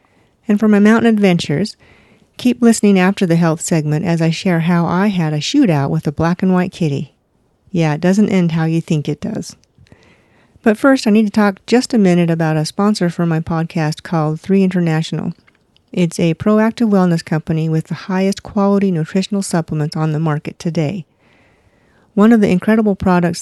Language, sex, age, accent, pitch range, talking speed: English, female, 50-69, American, 160-195 Hz, 185 wpm